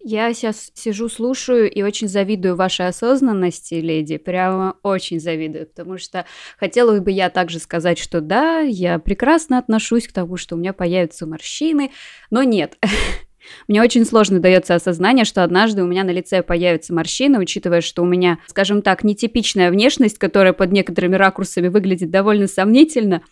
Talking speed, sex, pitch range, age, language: 160 wpm, female, 185-230 Hz, 20-39, Russian